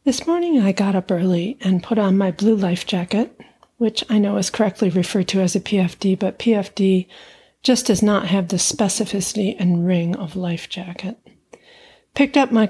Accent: American